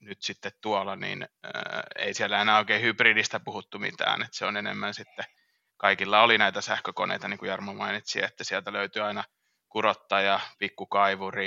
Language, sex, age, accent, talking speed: Finnish, male, 30-49, native, 160 wpm